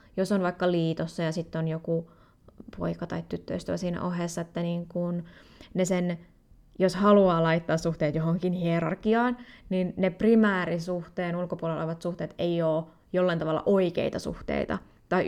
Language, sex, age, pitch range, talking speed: Finnish, female, 20-39, 170-210 Hz, 145 wpm